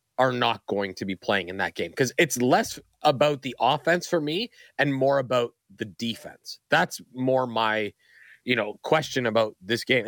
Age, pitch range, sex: 20-39, 110-140 Hz, male